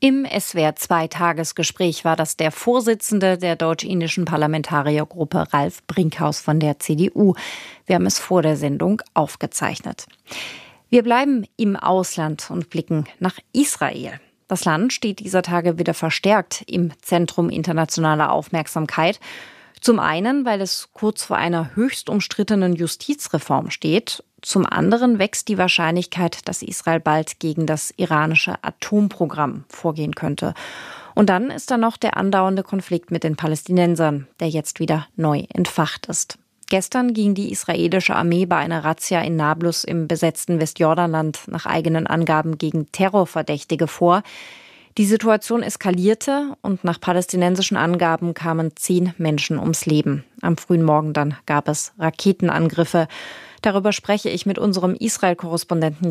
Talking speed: 135 wpm